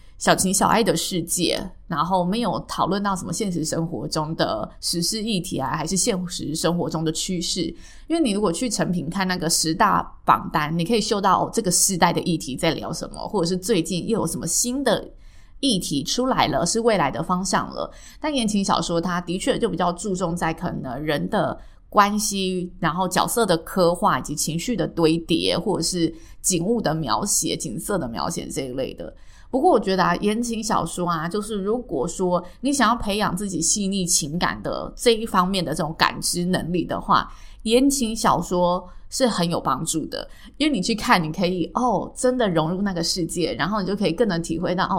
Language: Chinese